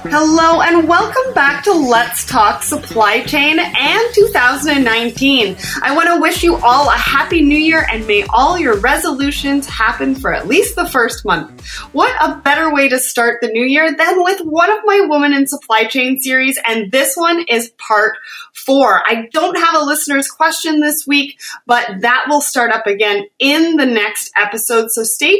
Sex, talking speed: female, 185 wpm